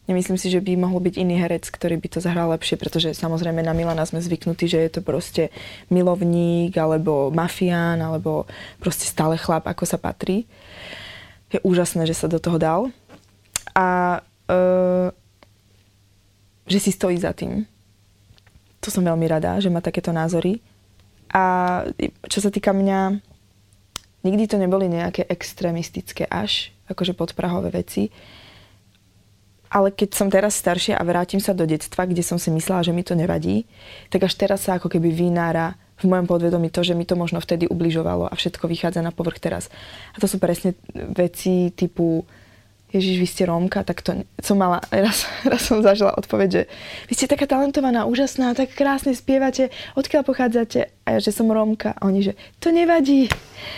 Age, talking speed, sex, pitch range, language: 20-39, 165 wpm, female, 160-200 Hz, Slovak